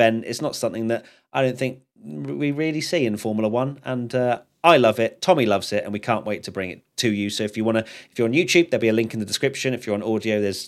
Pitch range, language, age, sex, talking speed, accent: 110-145 Hz, English, 30-49, male, 285 wpm, British